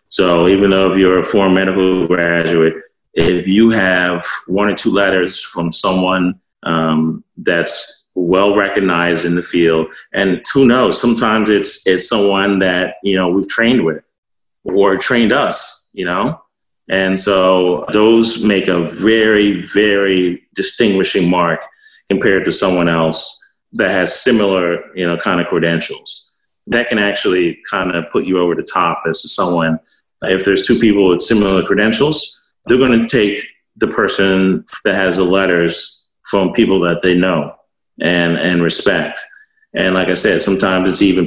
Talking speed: 155 wpm